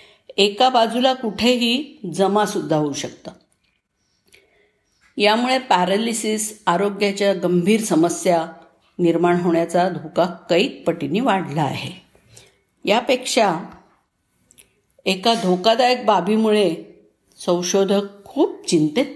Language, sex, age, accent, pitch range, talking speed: Marathi, female, 50-69, native, 180-230 Hz, 80 wpm